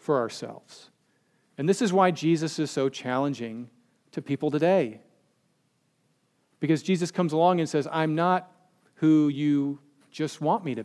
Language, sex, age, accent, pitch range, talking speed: English, male, 40-59, American, 135-170 Hz, 150 wpm